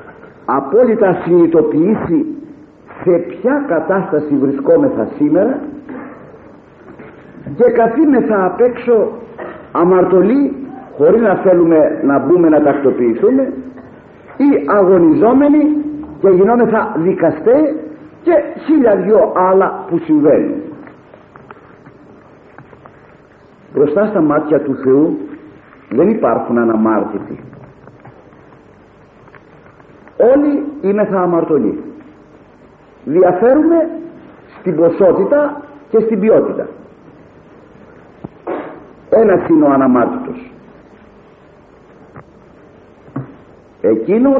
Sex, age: male, 50-69